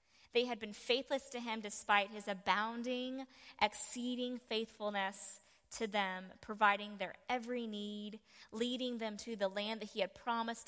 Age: 20-39